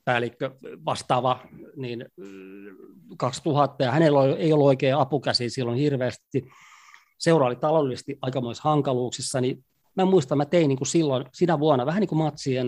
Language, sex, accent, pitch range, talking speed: Finnish, male, native, 130-165 Hz, 140 wpm